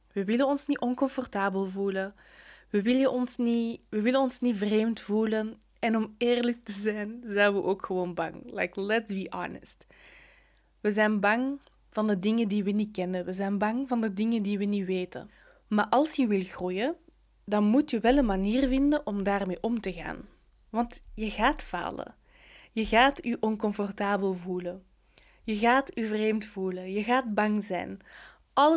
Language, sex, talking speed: Dutch, female, 175 wpm